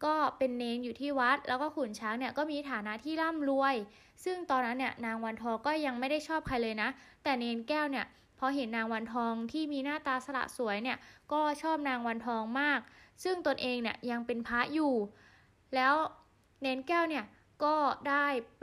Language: Thai